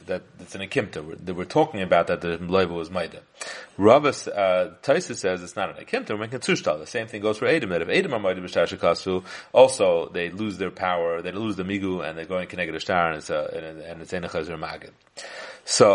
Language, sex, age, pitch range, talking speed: English, male, 30-49, 90-110 Hz, 220 wpm